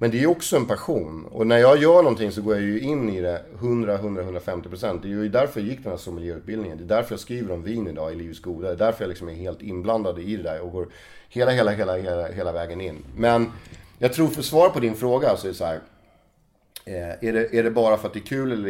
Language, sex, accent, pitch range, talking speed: Swedish, male, native, 90-115 Hz, 265 wpm